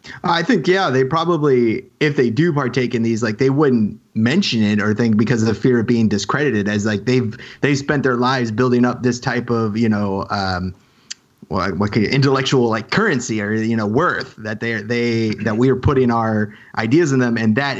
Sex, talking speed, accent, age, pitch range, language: male, 215 wpm, American, 30-49, 110-130 Hz, English